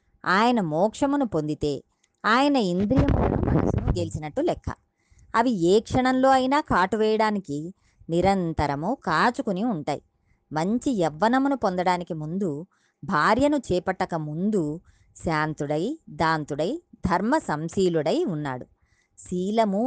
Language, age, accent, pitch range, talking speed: Telugu, 20-39, native, 165-245 Hz, 90 wpm